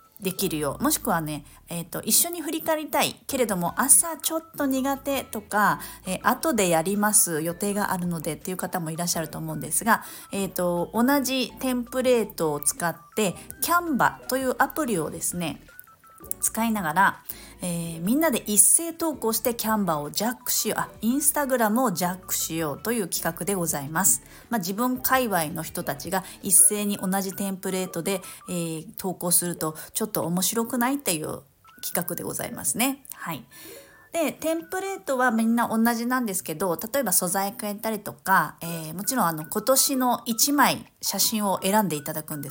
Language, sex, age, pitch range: Japanese, female, 40-59, 175-240 Hz